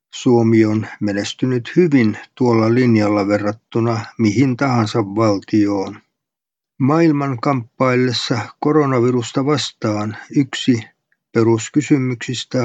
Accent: native